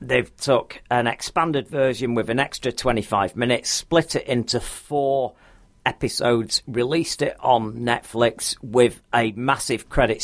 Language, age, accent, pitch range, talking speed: English, 40-59, British, 110-135 Hz, 135 wpm